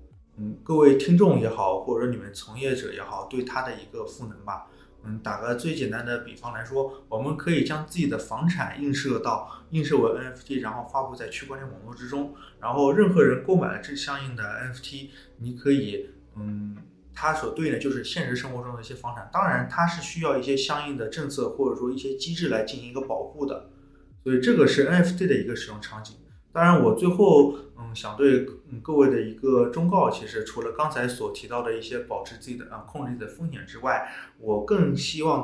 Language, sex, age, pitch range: Chinese, male, 20-39, 120-150 Hz